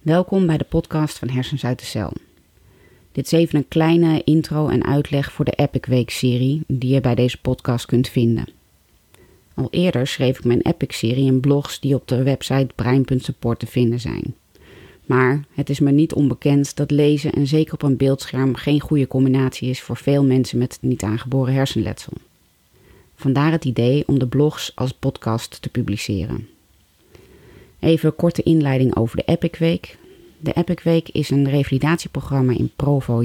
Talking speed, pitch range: 170 wpm, 125-150 Hz